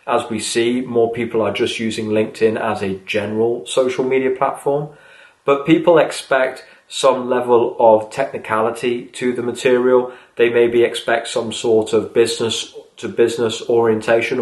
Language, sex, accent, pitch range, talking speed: English, male, British, 110-130 Hz, 145 wpm